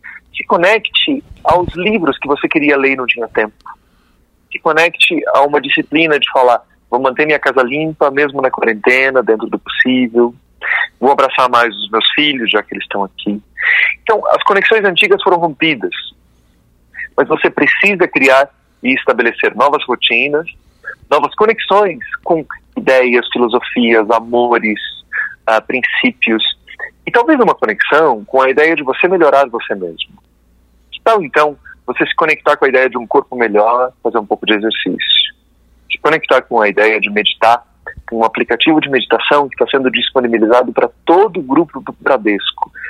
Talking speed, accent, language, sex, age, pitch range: 160 wpm, Brazilian, Portuguese, male, 40-59, 110-155 Hz